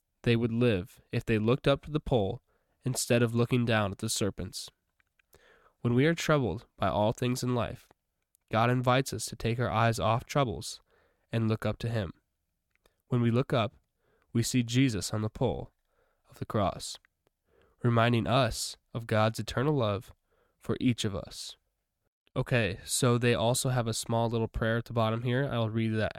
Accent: American